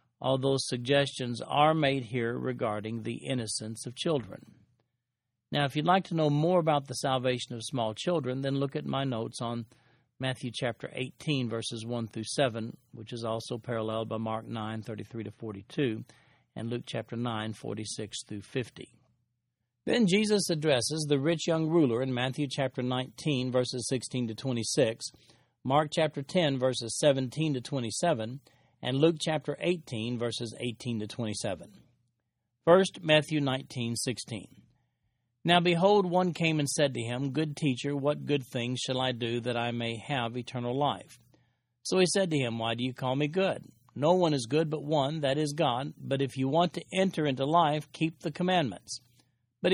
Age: 50-69